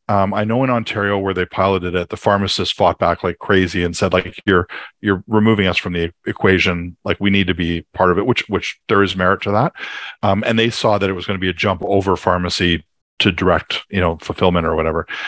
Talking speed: 240 wpm